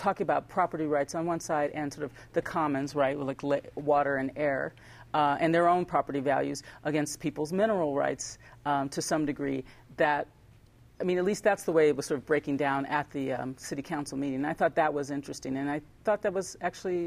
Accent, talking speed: American, 220 wpm